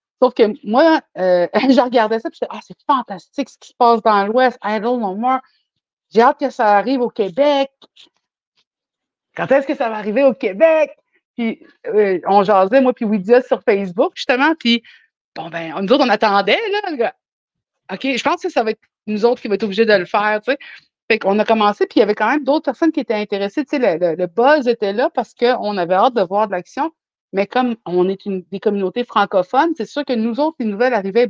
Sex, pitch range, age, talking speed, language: female, 200-265 Hz, 50-69, 230 wpm, French